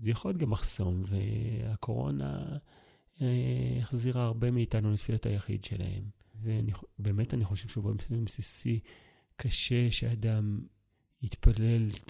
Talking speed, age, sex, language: 105 wpm, 30-49, male, Hebrew